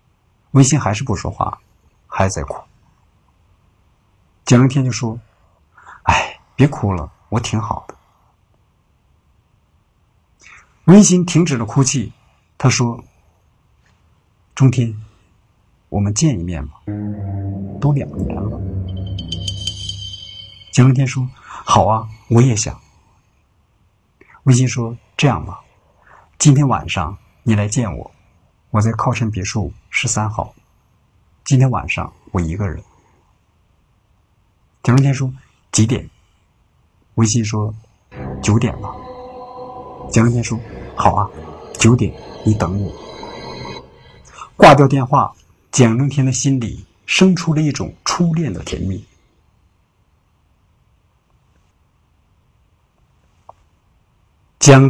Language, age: Chinese, 60-79